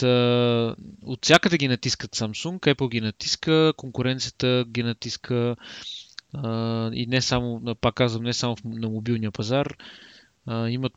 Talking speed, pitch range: 120 wpm, 115-135 Hz